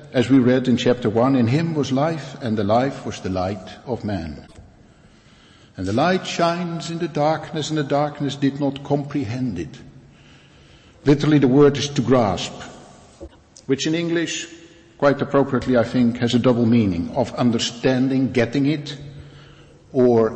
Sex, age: male, 60-79